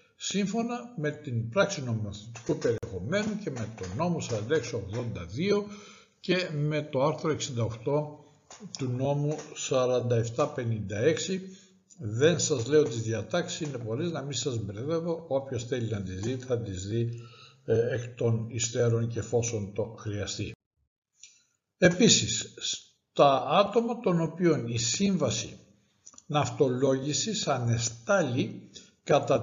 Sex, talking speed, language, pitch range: male, 115 wpm, Greek, 115-155 Hz